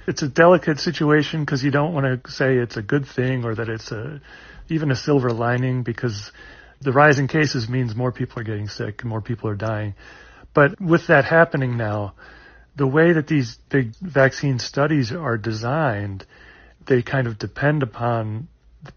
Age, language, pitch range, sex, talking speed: 40-59, English, 115-140 Hz, male, 180 wpm